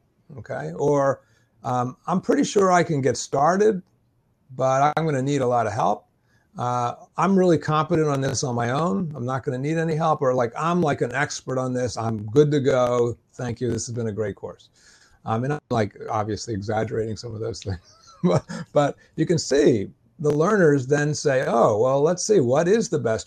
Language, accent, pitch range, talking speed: English, American, 120-160 Hz, 210 wpm